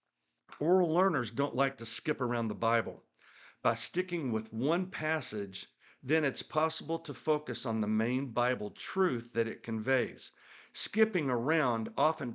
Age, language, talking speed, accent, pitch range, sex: 60-79, English, 145 wpm, American, 115-160 Hz, male